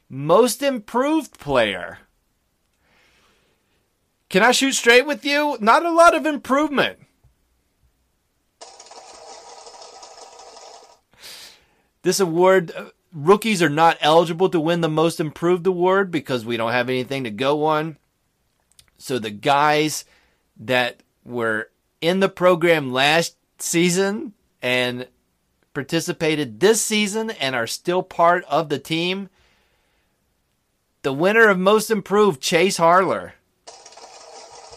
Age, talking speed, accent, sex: 30-49, 105 wpm, American, male